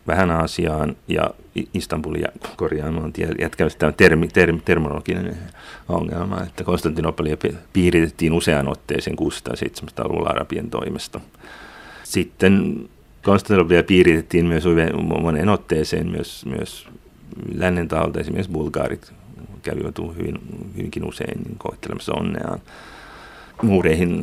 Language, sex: Finnish, male